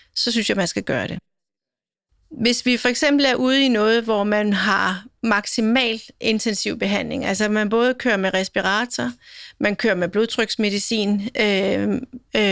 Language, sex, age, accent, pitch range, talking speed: Danish, female, 40-59, native, 200-245 Hz, 155 wpm